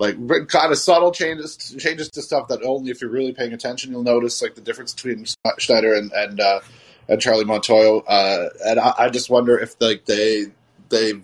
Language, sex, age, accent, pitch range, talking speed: English, male, 30-49, American, 115-155 Hz, 205 wpm